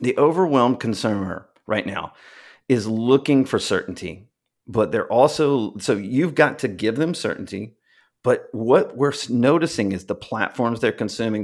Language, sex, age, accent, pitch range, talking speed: English, male, 40-59, American, 100-130 Hz, 145 wpm